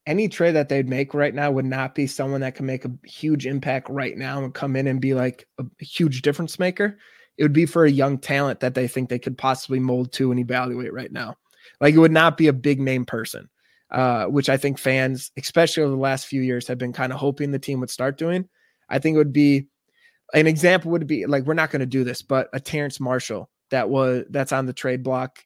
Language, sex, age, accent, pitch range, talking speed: English, male, 20-39, American, 130-150 Hz, 245 wpm